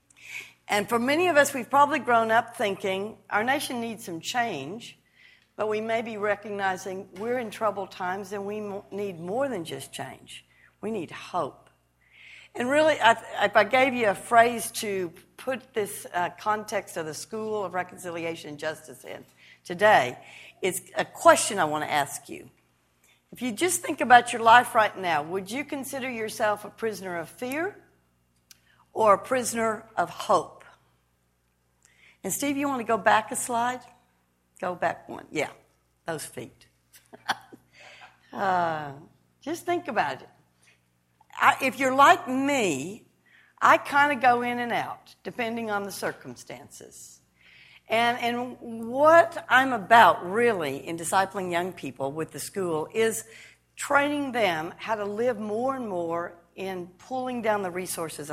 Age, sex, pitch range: 60-79, female, 165-245 Hz